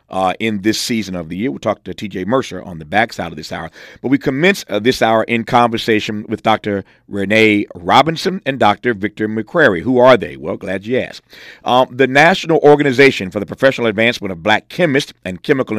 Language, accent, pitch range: English, American, 105-135 Hz